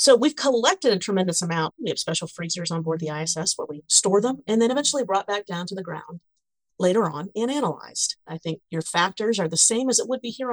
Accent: American